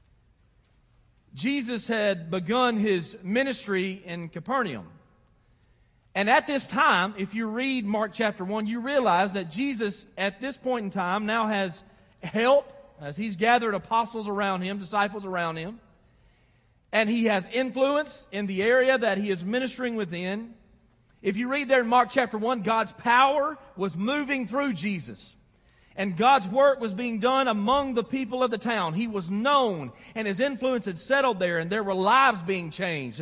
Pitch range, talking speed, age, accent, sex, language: 195-260 Hz, 165 wpm, 40-59, American, male, English